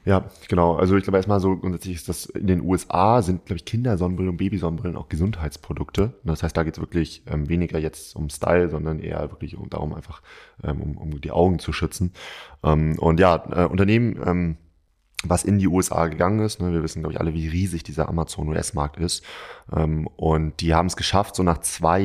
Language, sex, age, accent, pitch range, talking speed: German, male, 20-39, German, 80-95 Hz, 205 wpm